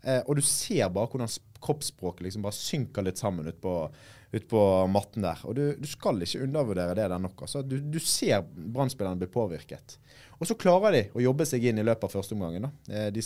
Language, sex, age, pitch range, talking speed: English, male, 20-39, 90-125 Hz, 210 wpm